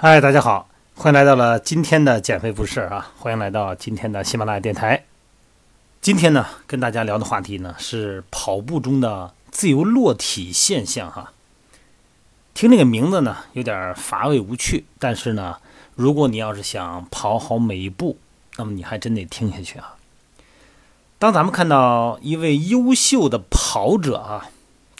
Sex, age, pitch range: male, 30-49, 105-145 Hz